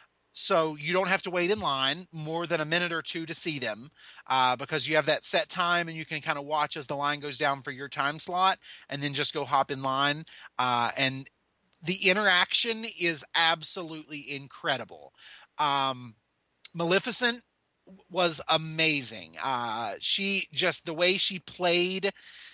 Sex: male